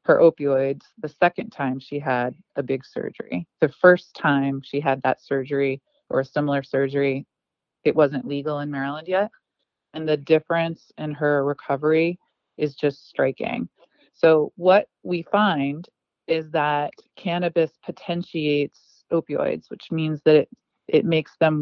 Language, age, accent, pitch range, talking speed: English, 30-49, American, 145-175 Hz, 145 wpm